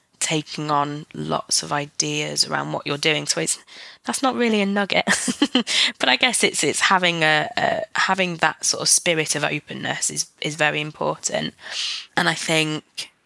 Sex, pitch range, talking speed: female, 150-165 Hz, 170 wpm